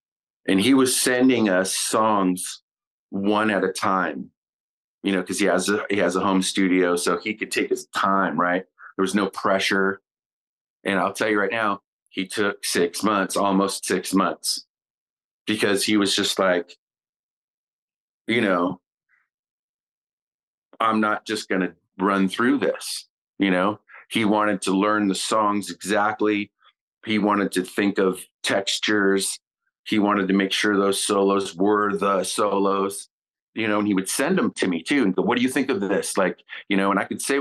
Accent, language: American, English